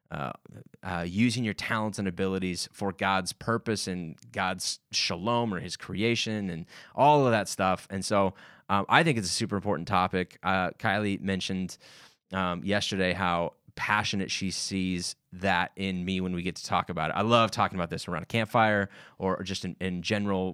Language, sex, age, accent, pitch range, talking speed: English, male, 20-39, American, 90-105 Hz, 185 wpm